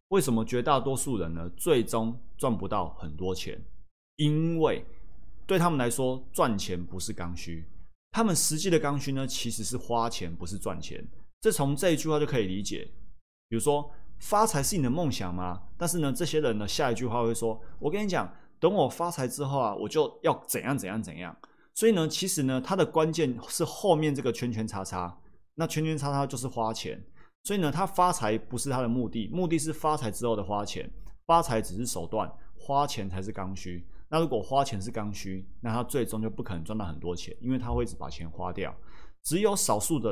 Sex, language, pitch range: male, Chinese, 95-145 Hz